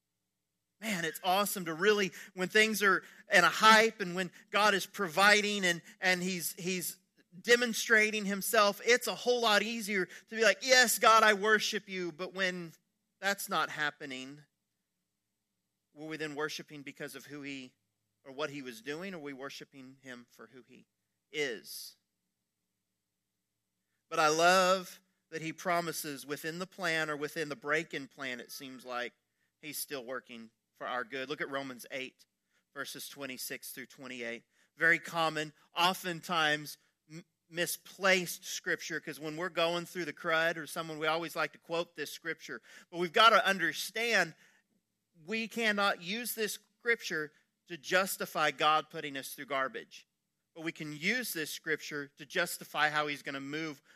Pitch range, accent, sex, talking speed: 150-195 Hz, American, male, 160 wpm